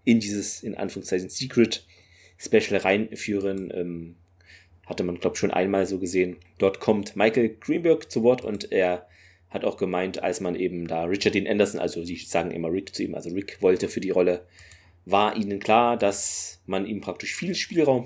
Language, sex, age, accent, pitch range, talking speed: German, male, 30-49, German, 90-110 Hz, 185 wpm